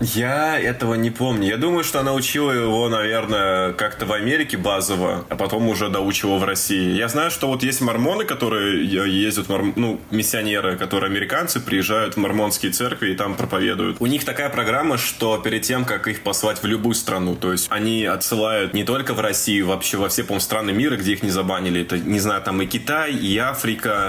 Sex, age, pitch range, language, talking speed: male, 20-39, 100-120 Hz, Russian, 195 wpm